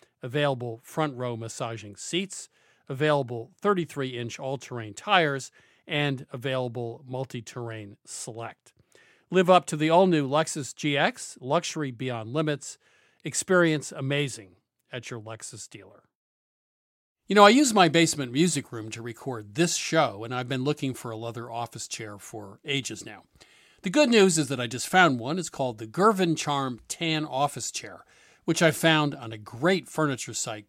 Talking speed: 155 wpm